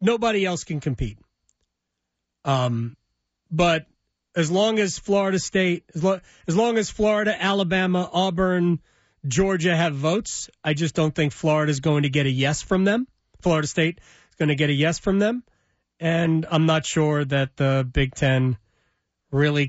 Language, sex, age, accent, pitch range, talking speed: English, male, 30-49, American, 130-175 Hz, 160 wpm